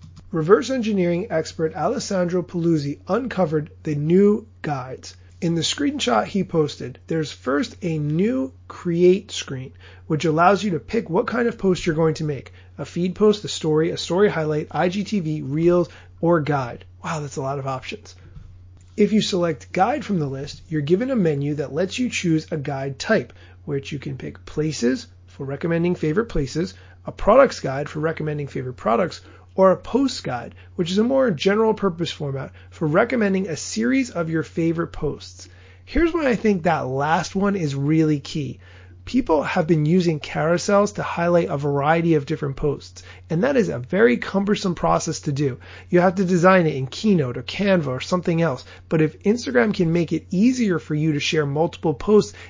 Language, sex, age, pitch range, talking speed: English, male, 30-49, 135-185 Hz, 185 wpm